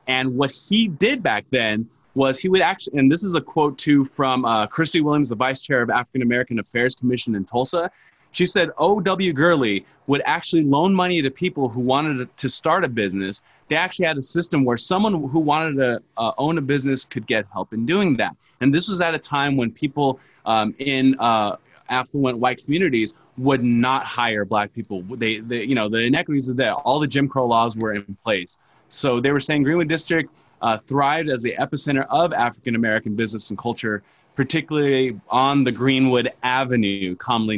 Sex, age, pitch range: male, 20-39, 120-150 Hz